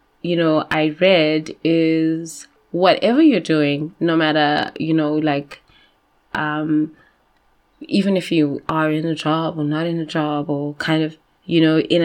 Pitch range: 155-180 Hz